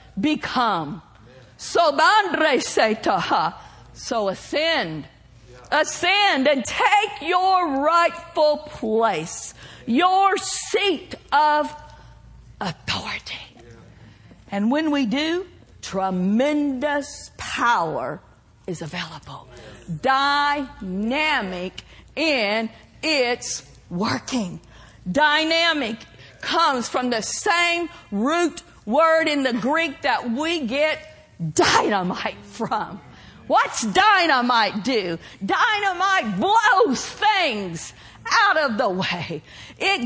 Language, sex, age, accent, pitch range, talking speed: English, female, 50-69, American, 220-360 Hz, 75 wpm